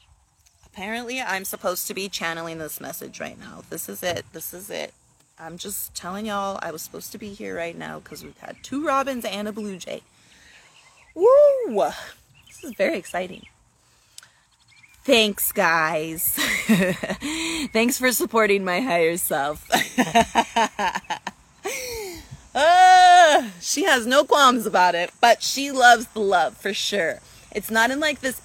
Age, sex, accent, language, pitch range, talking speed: 30-49, female, American, English, 175-240 Hz, 145 wpm